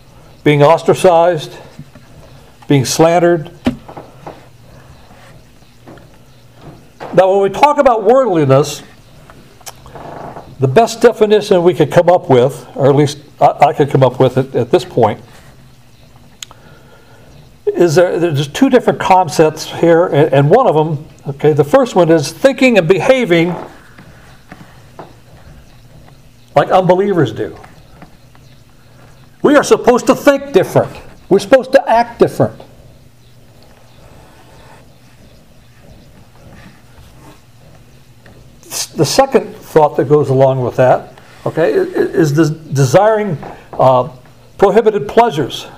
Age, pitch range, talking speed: 60-79, 130-195 Hz, 100 wpm